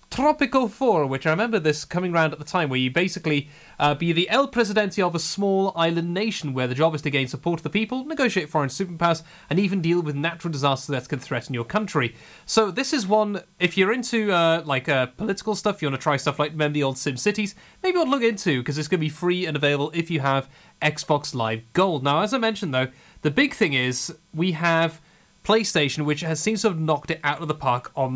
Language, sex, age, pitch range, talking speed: English, male, 30-49, 145-195 Hz, 240 wpm